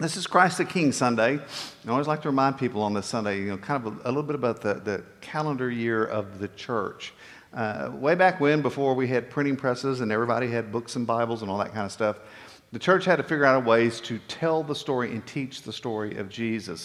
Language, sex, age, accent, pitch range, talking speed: English, male, 50-69, American, 105-140 Hz, 245 wpm